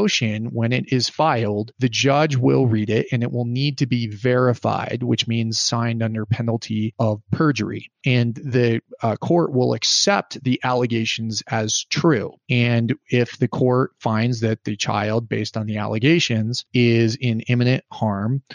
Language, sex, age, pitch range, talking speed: English, male, 30-49, 115-135 Hz, 160 wpm